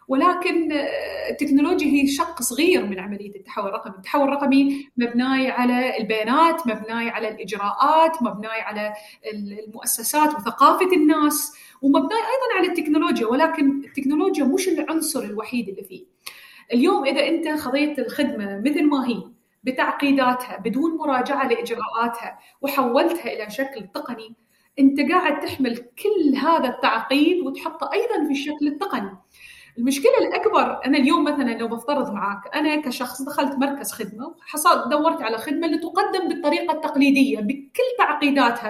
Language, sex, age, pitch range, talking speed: Arabic, female, 30-49, 245-315 Hz, 130 wpm